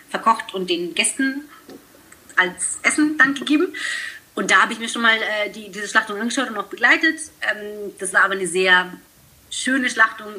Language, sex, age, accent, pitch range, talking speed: German, female, 30-49, German, 185-290 Hz, 180 wpm